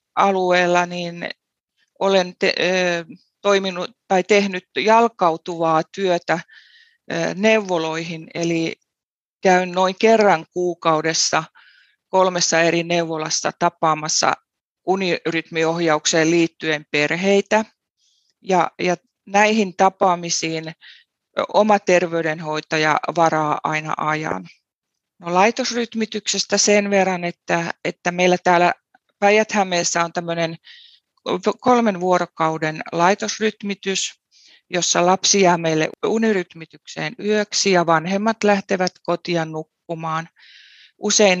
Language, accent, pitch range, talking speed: Finnish, native, 160-195 Hz, 85 wpm